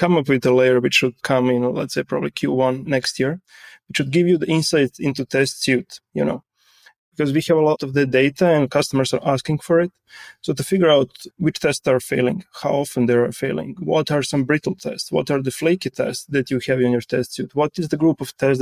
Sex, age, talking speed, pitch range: male, 20-39, 245 wpm, 130-155 Hz